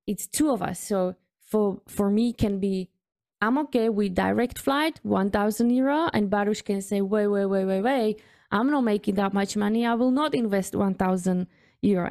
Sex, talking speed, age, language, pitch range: female, 190 wpm, 20-39, English, 195-250 Hz